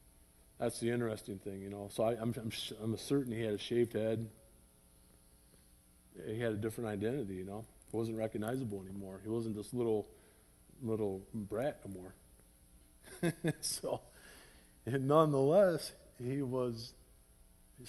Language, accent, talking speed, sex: English, American, 140 wpm, male